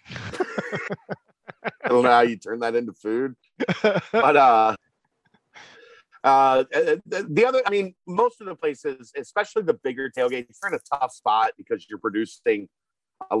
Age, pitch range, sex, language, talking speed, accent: 40-59, 110-160 Hz, male, English, 150 wpm, American